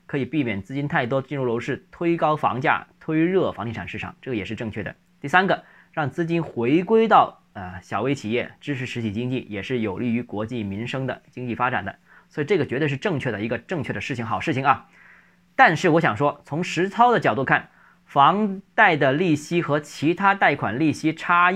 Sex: male